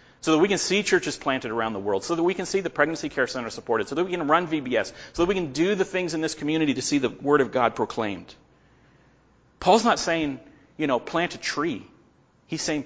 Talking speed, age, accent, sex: 245 wpm, 40-59, American, male